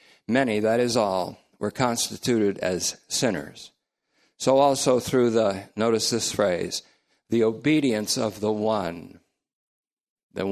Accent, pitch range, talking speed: American, 100-125 Hz, 120 wpm